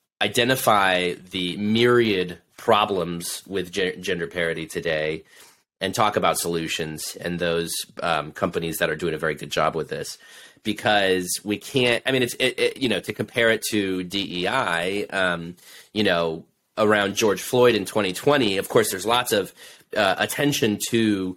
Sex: male